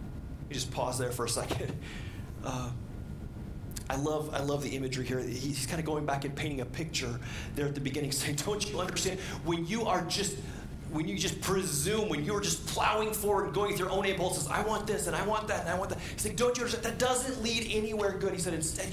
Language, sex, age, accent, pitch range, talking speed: English, male, 30-49, American, 155-215 Hz, 240 wpm